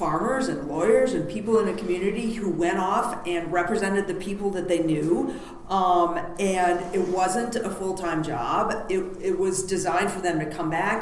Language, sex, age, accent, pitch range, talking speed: English, female, 40-59, American, 165-205 Hz, 190 wpm